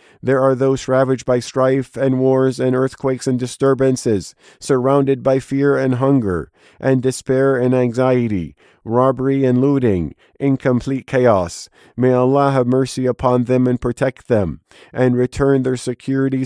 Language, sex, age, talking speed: English, male, 40-59, 140 wpm